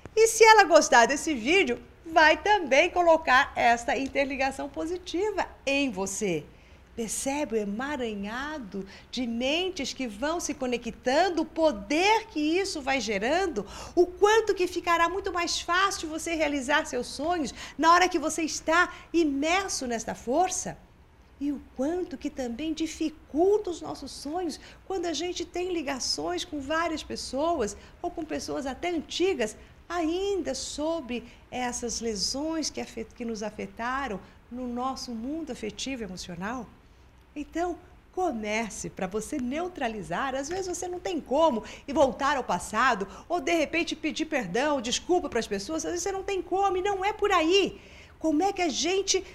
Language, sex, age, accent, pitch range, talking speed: Portuguese, female, 50-69, Brazilian, 245-345 Hz, 150 wpm